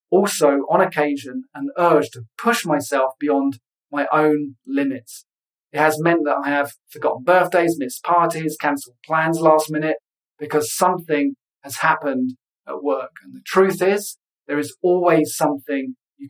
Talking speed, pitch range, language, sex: 150 wpm, 135-165 Hz, English, male